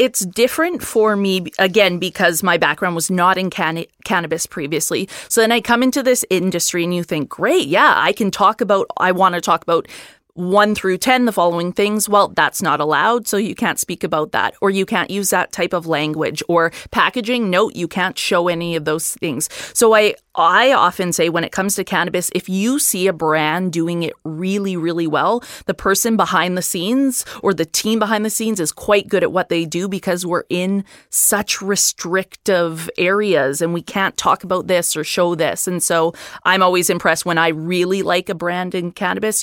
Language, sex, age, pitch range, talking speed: English, female, 20-39, 165-205 Hz, 205 wpm